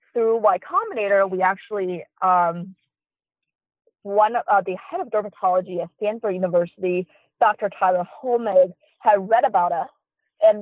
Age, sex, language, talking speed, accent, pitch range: 20-39, female, English, 130 wpm, American, 180-215 Hz